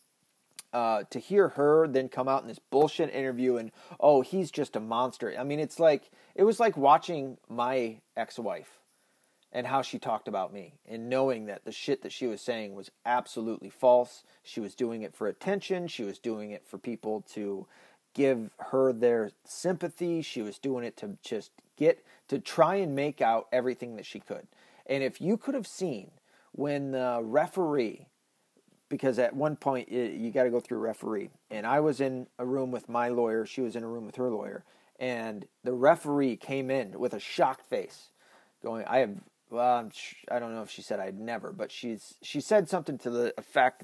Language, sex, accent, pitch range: English, male, American, 115-145 Hz